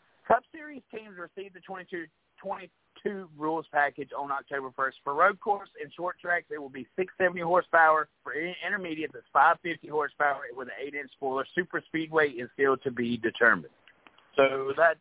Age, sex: 50-69, male